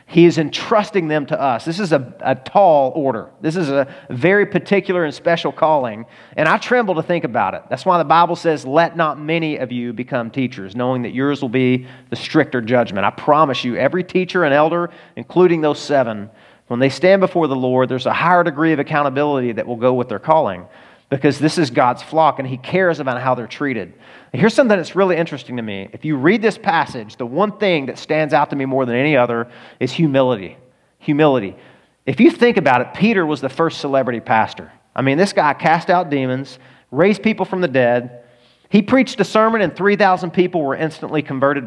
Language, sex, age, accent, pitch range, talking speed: English, male, 40-59, American, 130-180 Hz, 210 wpm